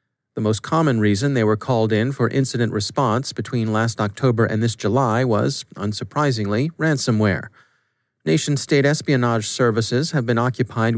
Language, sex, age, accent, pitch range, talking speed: English, male, 40-59, American, 110-135 Hz, 140 wpm